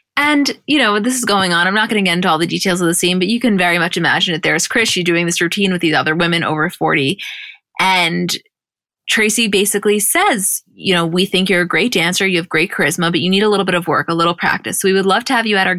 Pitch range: 175-205 Hz